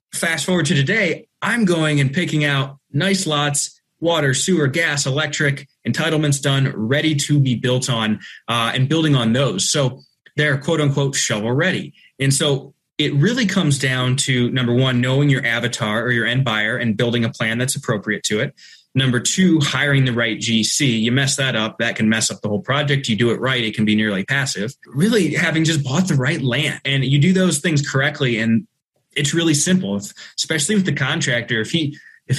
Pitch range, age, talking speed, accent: 120-155 Hz, 20-39, 200 wpm, American